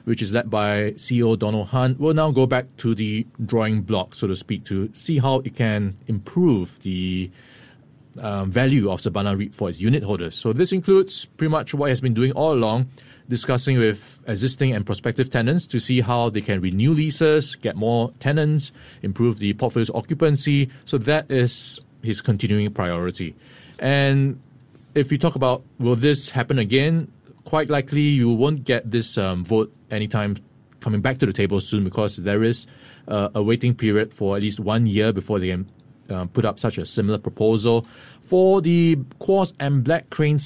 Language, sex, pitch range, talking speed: English, male, 105-135 Hz, 185 wpm